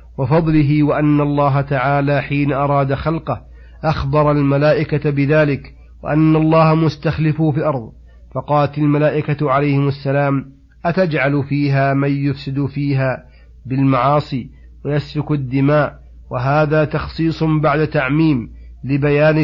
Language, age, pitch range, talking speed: Arabic, 40-59, 135-155 Hz, 100 wpm